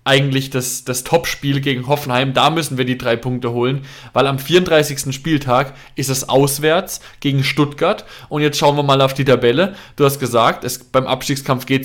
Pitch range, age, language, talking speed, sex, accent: 130-160 Hz, 20-39, German, 185 wpm, male, German